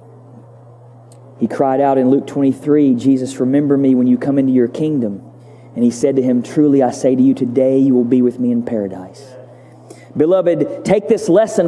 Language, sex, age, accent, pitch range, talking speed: English, male, 40-59, American, 130-215 Hz, 190 wpm